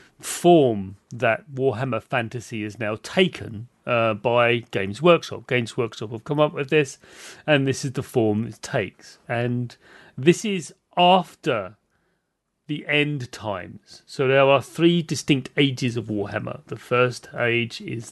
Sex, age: male, 40-59